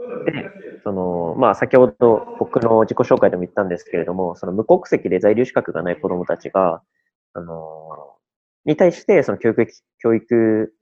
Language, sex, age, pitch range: Japanese, male, 20-39, 90-145 Hz